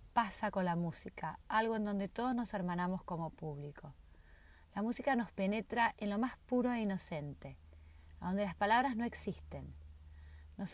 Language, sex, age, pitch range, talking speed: Spanish, female, 30-49, 140-205 Hz, 155 wpm